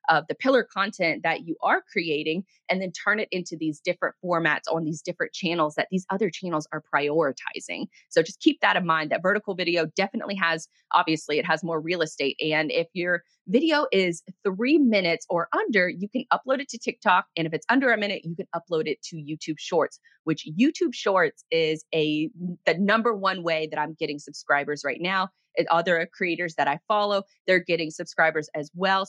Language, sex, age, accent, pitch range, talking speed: English, female, 20-39, American, 160-210 Hz, 200 wpm